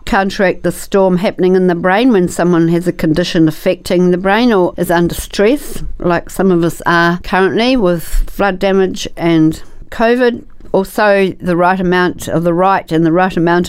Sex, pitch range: female, 170-190 Hz